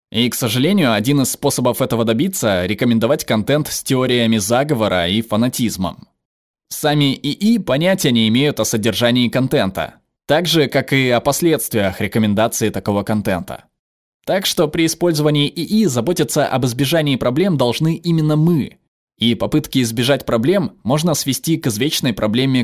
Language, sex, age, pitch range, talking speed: Russian, male, 20-39, 115-155 Hz, 140 wpm